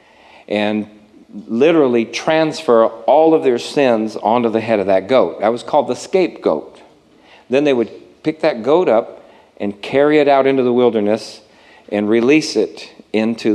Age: 50-69